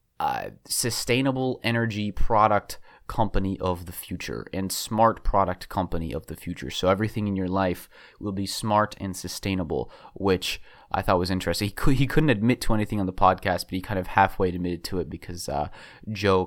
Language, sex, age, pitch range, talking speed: English, male, 20-39, 90-110 Hz, 180 wpm